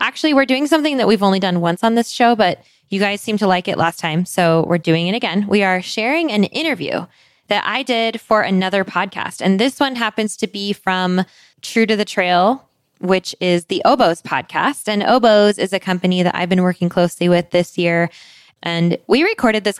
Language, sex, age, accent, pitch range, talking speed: English, female, 20-39, American, 180-245 Hz, 210 wpm